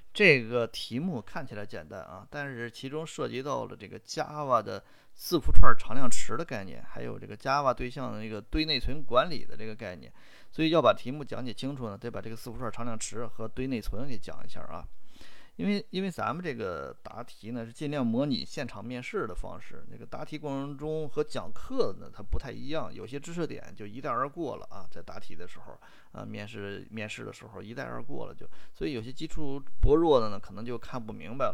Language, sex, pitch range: Chinese, male, 105-135 Hz